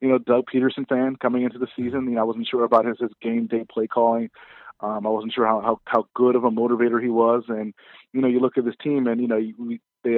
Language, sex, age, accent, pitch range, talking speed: English, male, 30-49, American, 115-140 Hz, 275 wpm